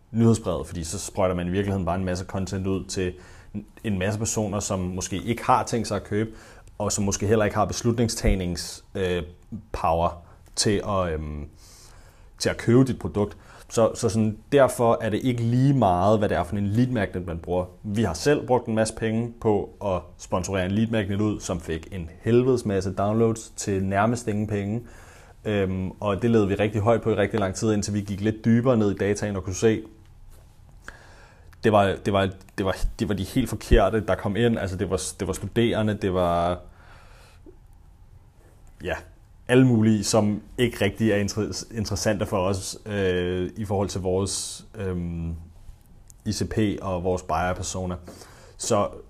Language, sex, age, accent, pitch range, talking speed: Danish, male, 30-49, native, 95-110 Hz, 180 wpm